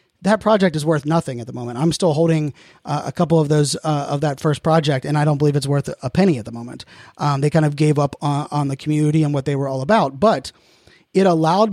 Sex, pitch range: male, 150-175 Hz